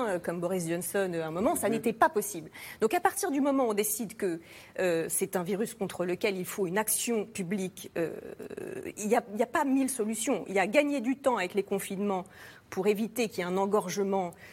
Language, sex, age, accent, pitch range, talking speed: French, female, 40-59, French, 185-250 Hz, 225 wpm